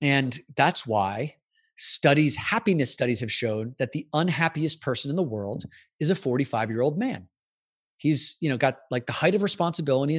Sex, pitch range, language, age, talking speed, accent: male, 115-150 Hz, English, 30-49, 170 wpm, American